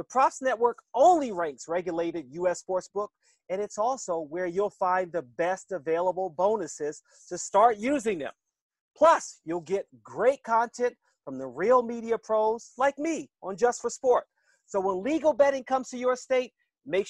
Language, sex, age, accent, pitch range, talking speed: English, male, 40-59, American, 155-220 Hz, 165 wpm